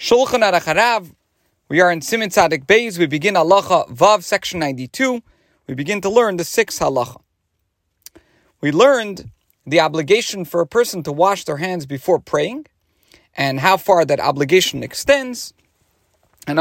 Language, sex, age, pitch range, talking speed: English, male, 40-59, 145-235 Hz, 150 wpm